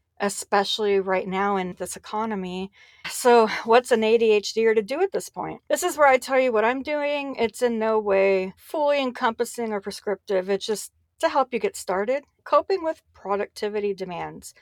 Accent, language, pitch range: American, English, 190-245 Hz